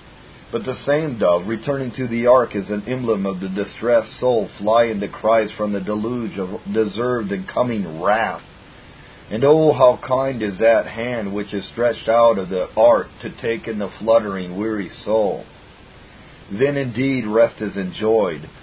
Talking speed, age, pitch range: 170 wpm, 50-69, 105-130 Hz